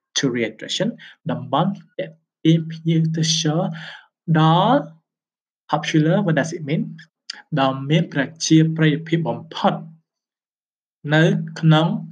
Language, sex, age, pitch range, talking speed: English, male, 20-39, 135-165 Hz, 80 wpm